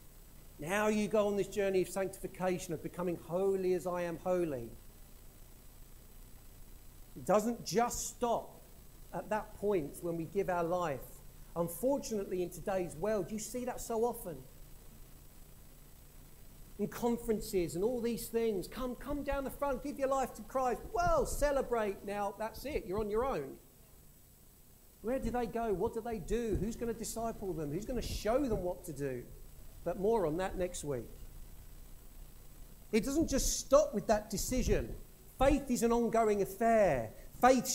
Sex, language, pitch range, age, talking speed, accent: male, English, 180-245 Hz, 50-69, 160 wpm, British